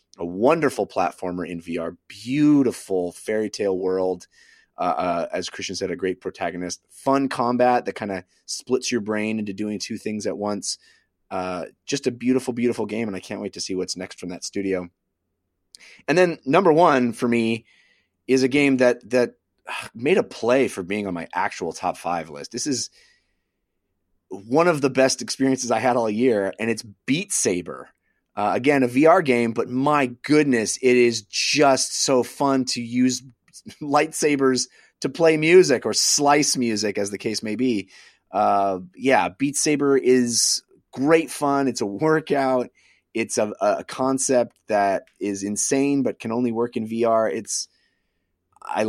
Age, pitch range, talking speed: 30-49, 95-135 Hz, 170 wpm